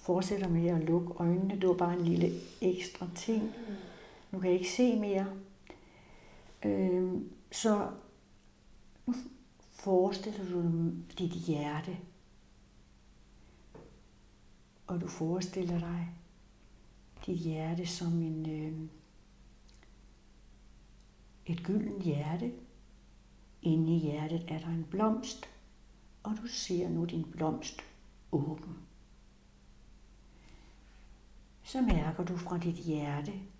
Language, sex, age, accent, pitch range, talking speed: Danish, female, 60-79, native, 150-185 Hz, 100 wpm